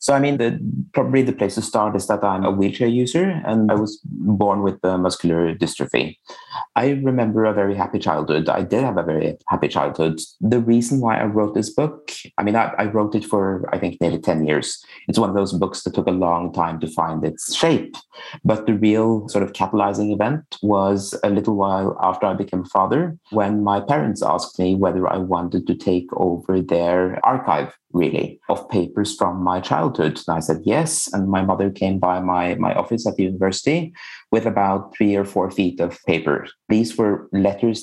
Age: 30-49